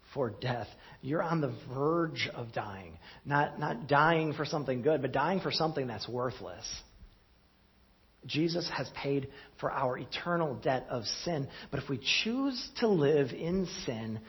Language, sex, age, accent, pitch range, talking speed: English, male, 40-59, American, 120-160 Hz, 155 wpm